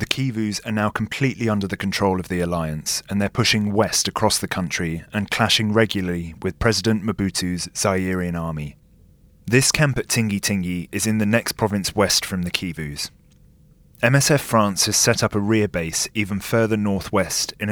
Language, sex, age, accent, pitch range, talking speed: English, male, 30-49, British, 90-110 Hz, 175 wpm